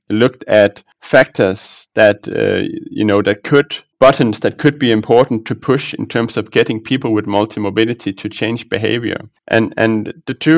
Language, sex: English, male